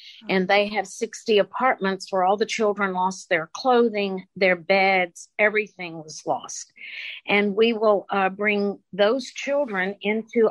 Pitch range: 190-220 Hz